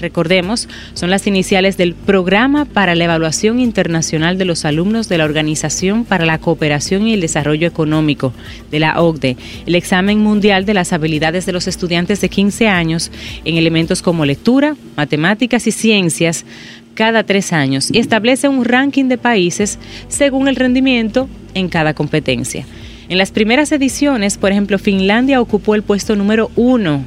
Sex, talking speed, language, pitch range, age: female, 160 wpm, Spanish, 165-230 Hz, 30-49